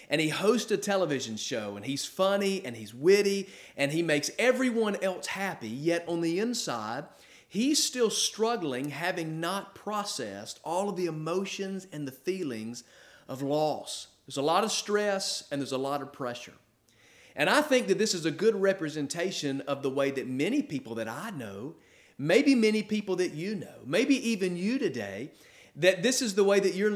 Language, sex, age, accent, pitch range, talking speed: English, male, 40-59, American, 145-200 Hz, 185 wpm